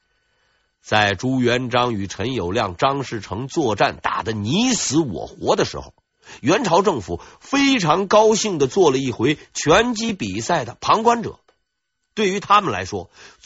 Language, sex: Chinese, male